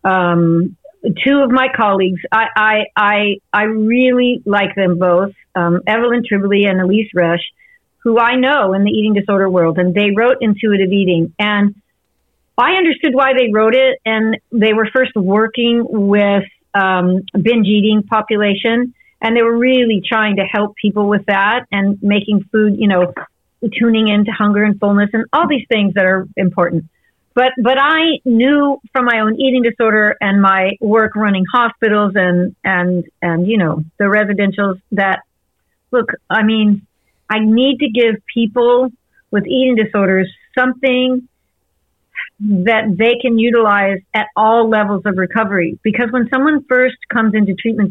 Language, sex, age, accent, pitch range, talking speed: English, female, 50-69, American, 200-240 Hz, 160 wpm